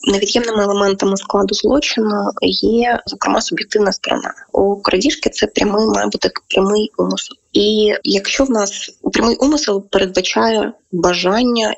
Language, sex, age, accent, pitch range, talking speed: Ukrainian, female, 20-39, native, 180-220 Hz, 120 wpm